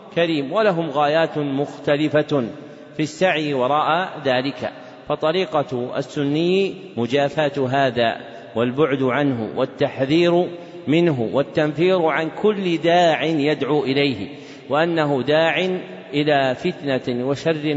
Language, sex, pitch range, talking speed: Arabic, male, 135-165 Hz, 90 wpm